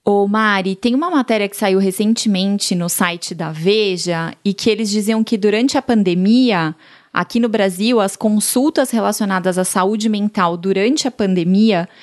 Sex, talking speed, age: female, 160 wpm, 20-39